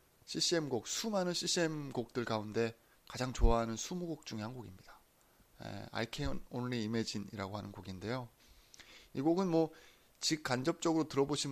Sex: male